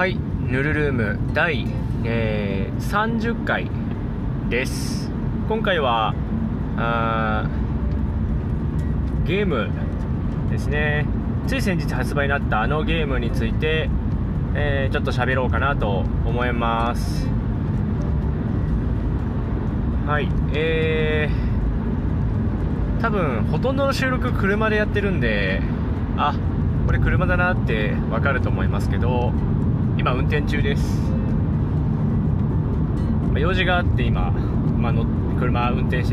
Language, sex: Japanese, male